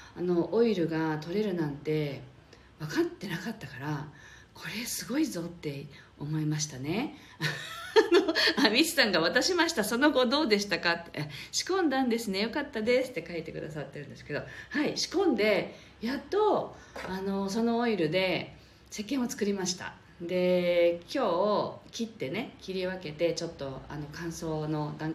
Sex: female